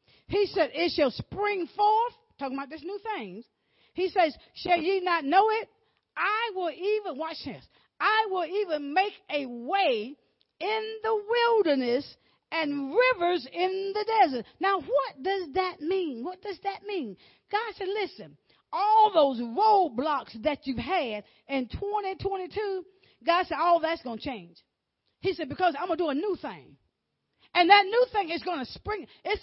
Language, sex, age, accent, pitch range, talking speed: English, female, 40-59, American, 305-410 Hz, 170 wpm